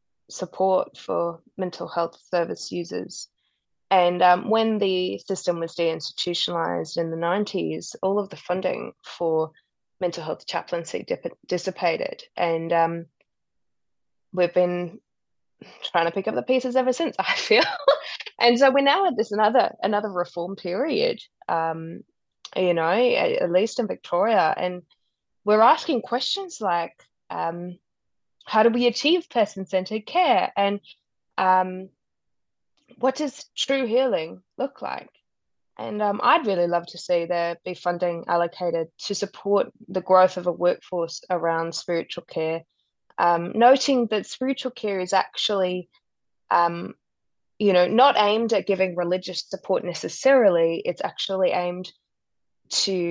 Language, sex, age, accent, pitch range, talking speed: English, female, 20-39, Australian, 170-220 Hz, 135 wpm